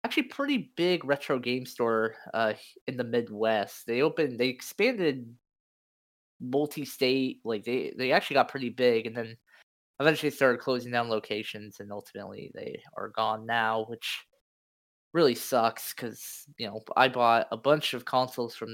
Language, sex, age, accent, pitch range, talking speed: English, male, 20-39, American, 110-130 Hz, 155 wpm